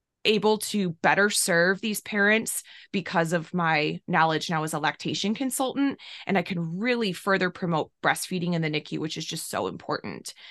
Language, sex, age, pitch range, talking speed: English, female, 20-39, 165-215 Hz, 170 wpm